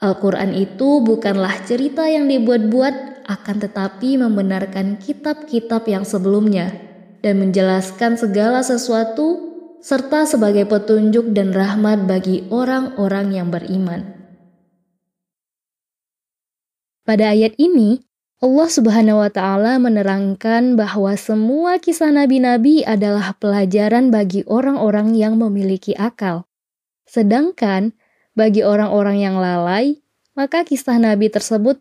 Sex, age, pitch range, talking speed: female, 20-39, 200-255 Hz, 100 wpm